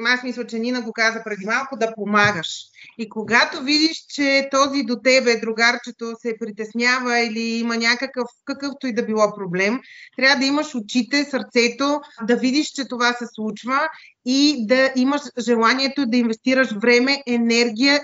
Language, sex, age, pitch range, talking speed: Bulgarian, female, 30-49, 220-260 Hz, 155 wpm